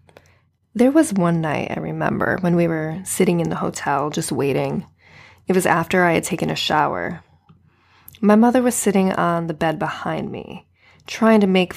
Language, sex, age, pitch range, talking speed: English, female, 20-39, 160-195 Hz, 180 wpm